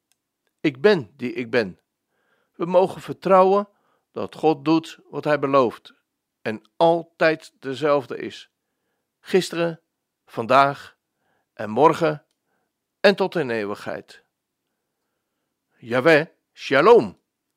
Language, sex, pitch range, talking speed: Dutch, male, 135-190 Hz, 95 wpm